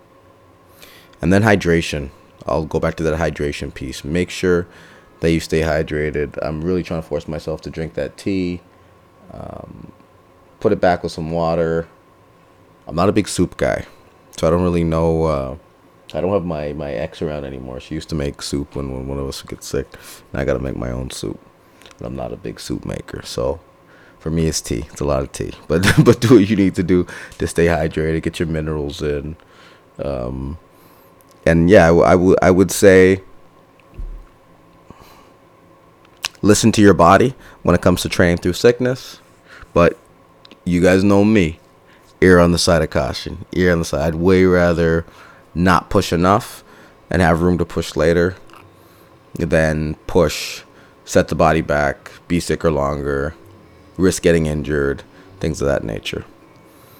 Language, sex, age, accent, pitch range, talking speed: English, male, 30-49, American, 75-90 Hz, 180 wpm